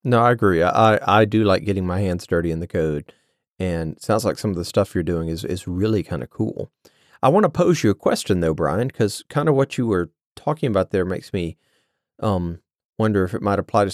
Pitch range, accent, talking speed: 90-115 Hz, American, 245 wpm